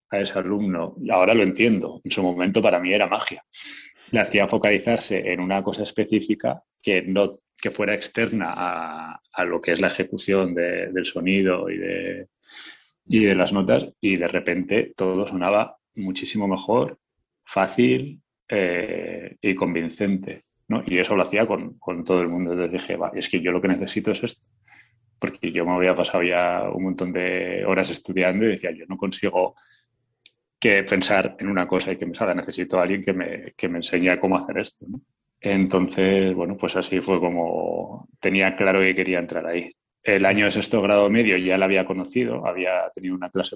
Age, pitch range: 30-49, 90-100 Hz